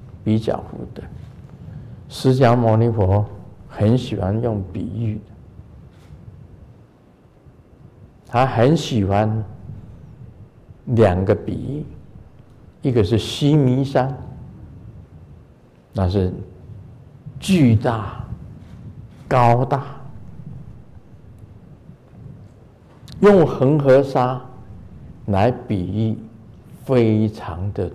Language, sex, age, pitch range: Chinese, male, 50-69, 100-130 Hz